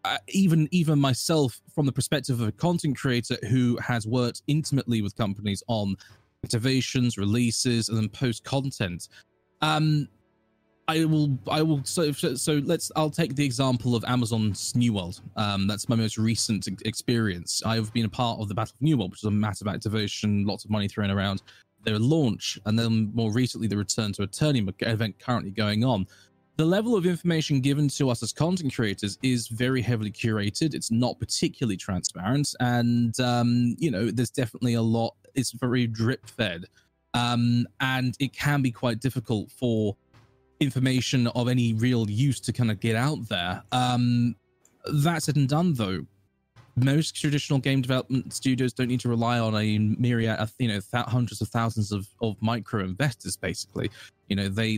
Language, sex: English, male